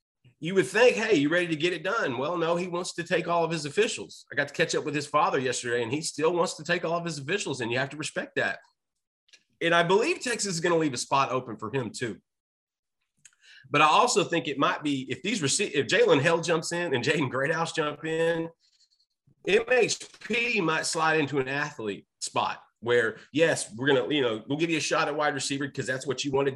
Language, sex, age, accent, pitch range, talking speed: English, male, 30-49, American, 130-165 Hz, 240 wpm